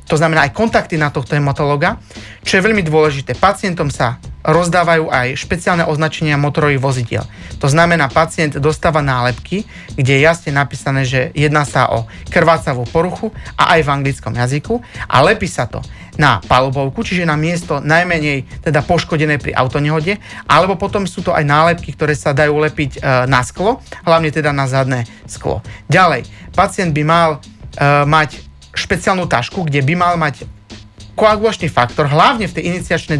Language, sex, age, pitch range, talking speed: Slovak, male, 40-59, 140-170 Hz, 160 wpm